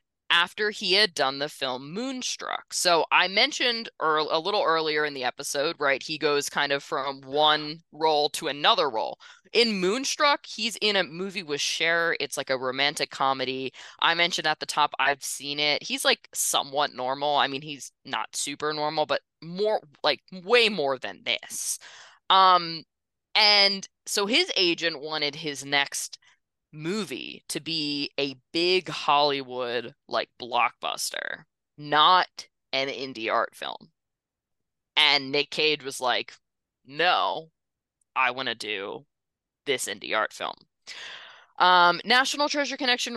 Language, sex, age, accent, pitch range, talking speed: English, female, 20-39, American, 145-190 Hz, 145 wpm